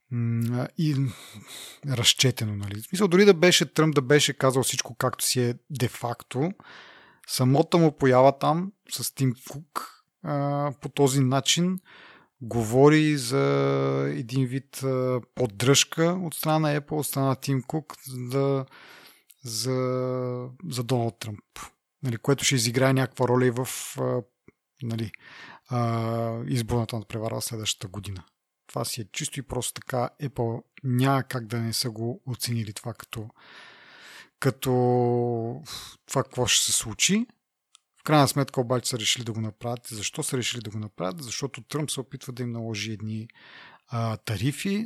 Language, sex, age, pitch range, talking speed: Bulgarian, male, 30-49, 115-140 Hz, 145 wpm